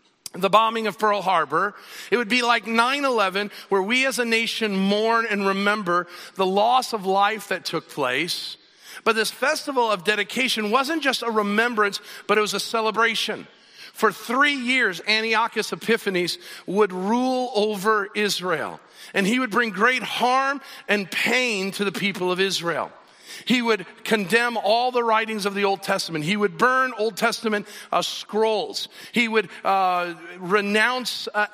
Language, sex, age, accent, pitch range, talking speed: English, male, 50-69, American, 170-220 Hz, 160 wpm